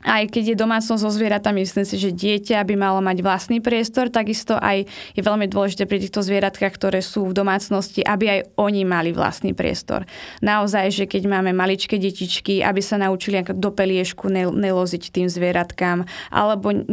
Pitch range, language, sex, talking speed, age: 190-210 Hz, Slovak, female, 170 wpm, 20-39